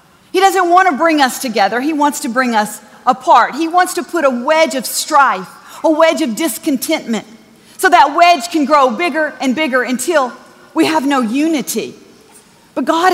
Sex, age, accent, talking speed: female, 40-59, American, 185 wpm